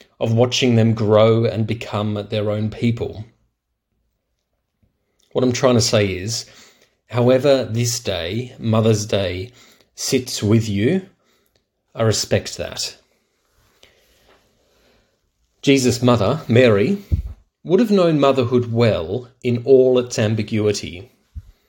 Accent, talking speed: Australian, 105 wpm